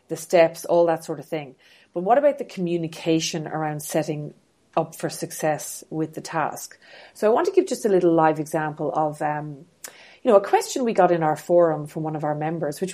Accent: Irish